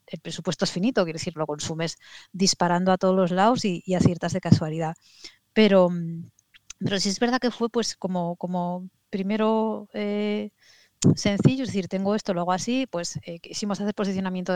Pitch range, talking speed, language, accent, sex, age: 165-190 Hz, 180 wpm, Spanish, Spanish, female, 30-49